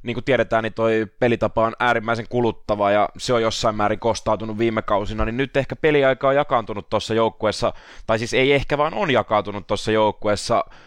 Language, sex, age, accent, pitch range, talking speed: Finnish, male, 20-39, native, 110-125 Hz, 190 wpm